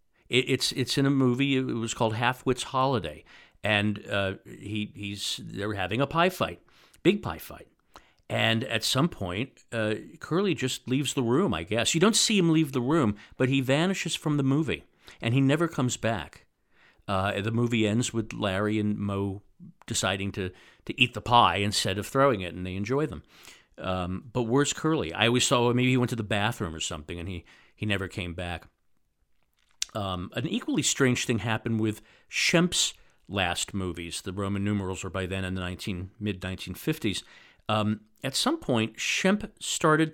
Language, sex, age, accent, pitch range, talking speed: English, male, 50-69, American, 100-130 Hz, 180 wpm